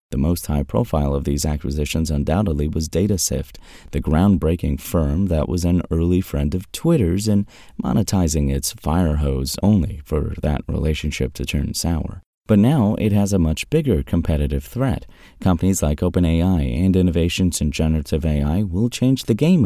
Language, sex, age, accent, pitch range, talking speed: English, male, 30-49, American, 75-100 Hz, 160 wpm